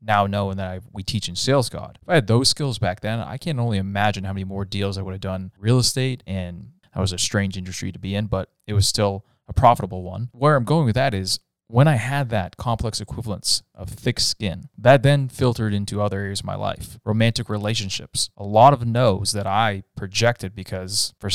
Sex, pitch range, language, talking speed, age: male, 100-120 Hz, English, 225 wpm, 20-39